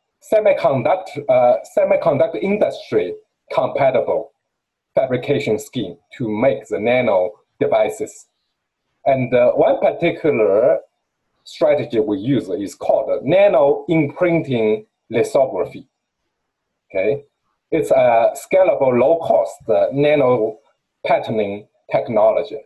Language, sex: English, male